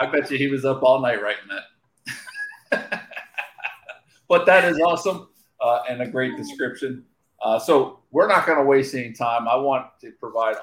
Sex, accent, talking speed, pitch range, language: male, American, 180 wpm, 110-155 Hz, English